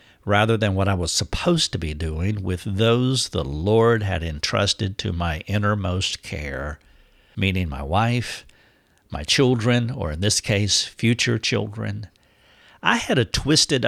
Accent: American